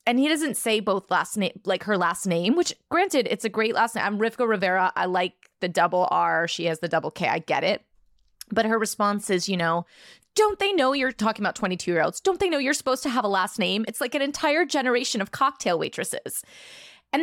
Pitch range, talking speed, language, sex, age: 190-280 Hz, 235 wpm, English, female, 20-39